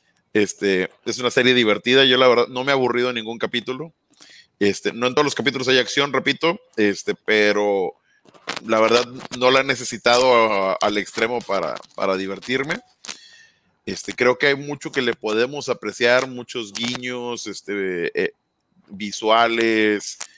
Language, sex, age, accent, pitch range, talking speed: Spanish, male, 30-49, Mexican, 110-135 Hz, 155 wpm